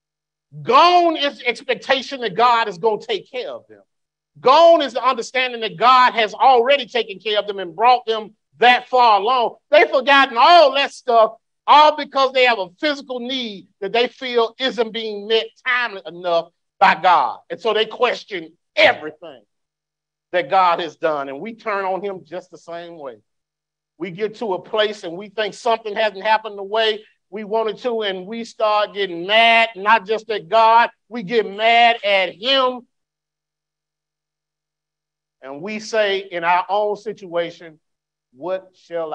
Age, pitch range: 50-69, 155-230 Hz